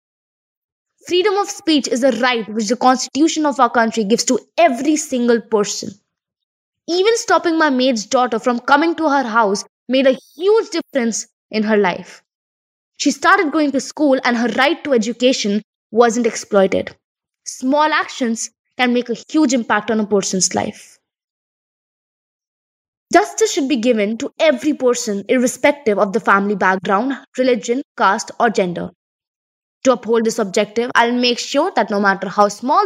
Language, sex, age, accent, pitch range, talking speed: English, female, 20-39, Indian, 215-280 Hz, 155 wpm